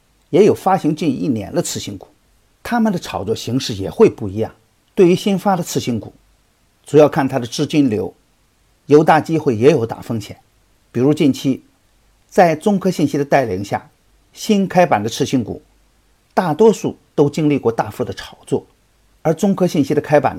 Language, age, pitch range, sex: Chinese, 50-69, 110-165 Hz, male